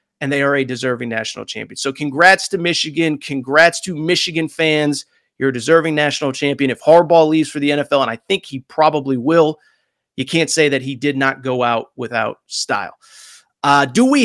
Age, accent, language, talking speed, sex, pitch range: 30-49, American, English, 195 wpm, male, 140-210 Hz